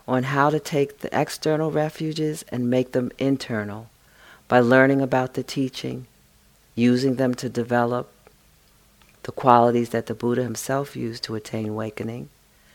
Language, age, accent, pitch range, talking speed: English, 50-69, American, 120-140 Hz, 140 wpm